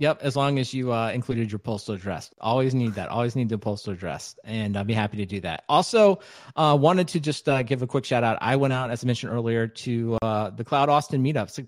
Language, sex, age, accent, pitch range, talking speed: English, male, 30-49, American, 105-125 Hz, 255 wpm